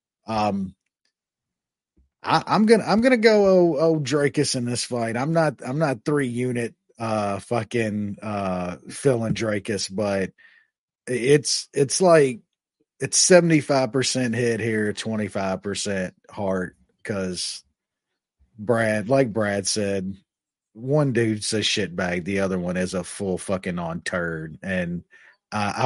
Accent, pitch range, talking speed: American, 95-120 Hz, 130 wpm